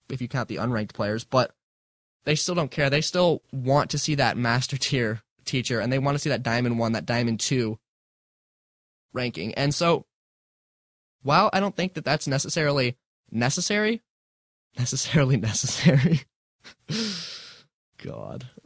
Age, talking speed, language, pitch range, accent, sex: 20-39, 145 wpm, English, 115-150 Hz, American, male